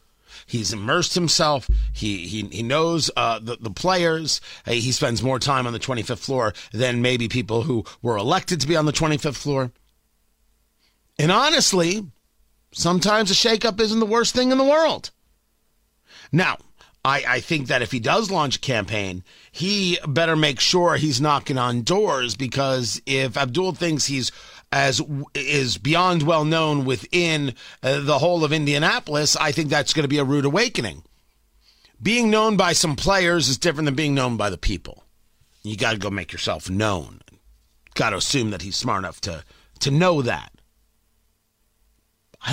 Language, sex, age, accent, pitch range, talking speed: English, male, 40-59, American, 115-175 Hz, 170 wpm